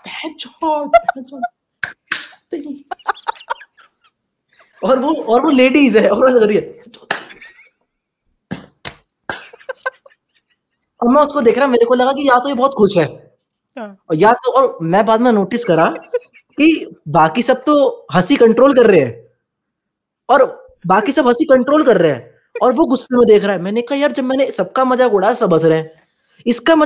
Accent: Indian